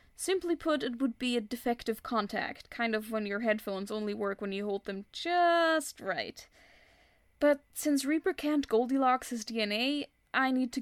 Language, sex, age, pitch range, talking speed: English, female, 10-29, 220-290 Hz, 170 wpm